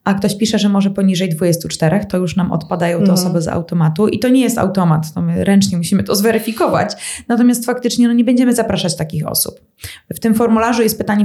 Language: Polish